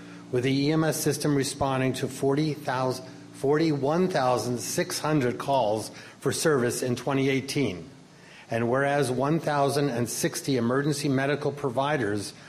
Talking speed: 85 wpm